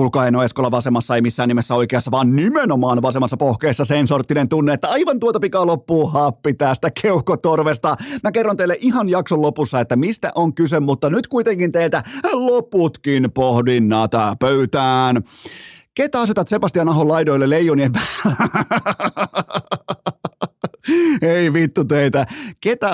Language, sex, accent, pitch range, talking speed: Finnish, male, native, 135-180 Hz, 125 wpm